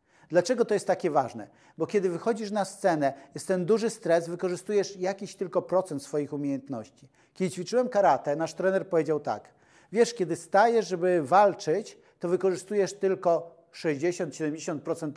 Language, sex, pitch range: Polish, male, 145-190 Hz